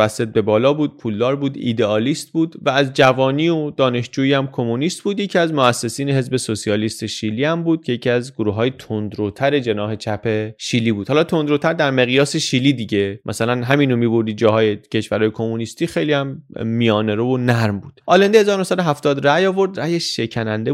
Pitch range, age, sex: 115-165 Hz, 30-49, male